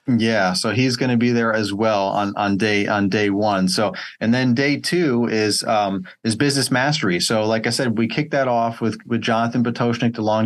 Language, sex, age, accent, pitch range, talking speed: English, male, 30-49, American, 105-125 Hz, 225 wpm